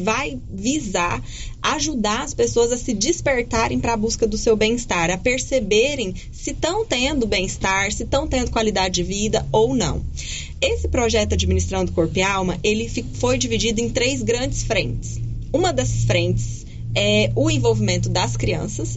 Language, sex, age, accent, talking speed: Portuguese, female, 20-39, Brazilian, 155 wpm